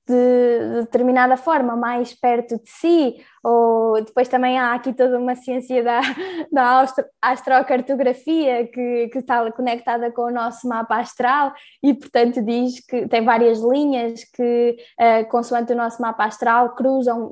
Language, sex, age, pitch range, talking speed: Portuguese, female, 10-29, 230-255 Hz, 140 wpm